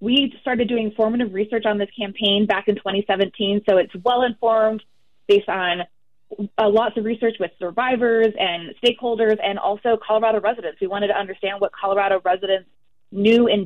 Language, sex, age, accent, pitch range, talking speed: English, female, 20-39, American, 190-225 Hz, 165 wpm